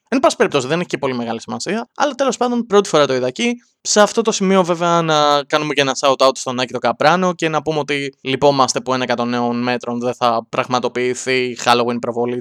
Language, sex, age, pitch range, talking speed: English, male, 20-39, 125-170 Hz, 220 wpm